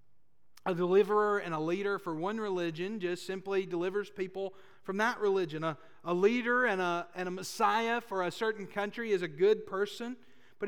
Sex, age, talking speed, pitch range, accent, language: male, 40-59, 175 wpm, 160-210 Hz, American, English